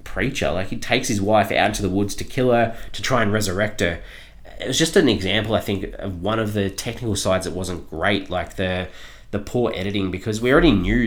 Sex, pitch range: male, 90-105 Hz